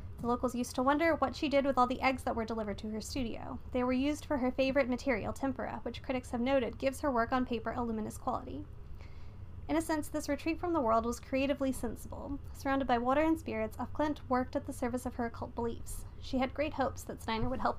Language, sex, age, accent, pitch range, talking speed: English, female, 30-49, American, 230-280 Hz, 235 wpm